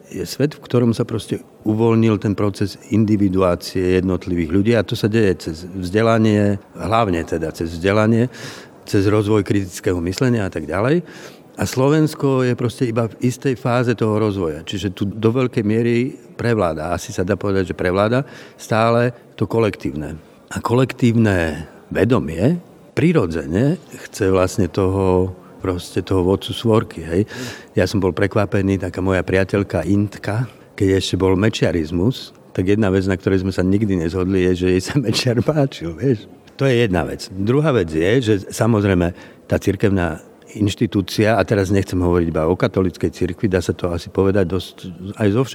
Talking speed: 160 wpm